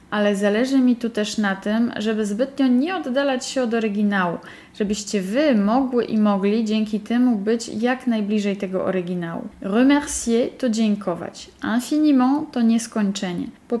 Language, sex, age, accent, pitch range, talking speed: Polish, female, 10-29, native, 205-250 Hz, 145 wpm